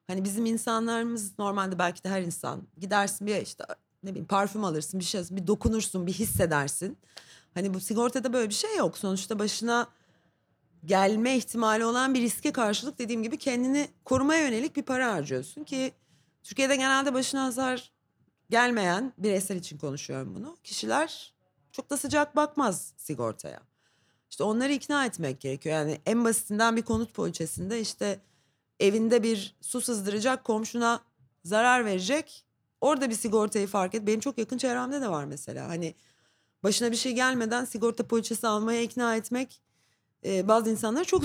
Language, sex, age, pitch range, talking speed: Turkish, female, 30-49, 165-245 Hz, 155 wpm